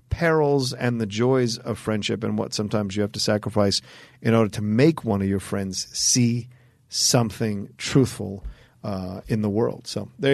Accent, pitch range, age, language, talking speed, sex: American, 110-135 Hz, 40-59, English, 175 wpm, male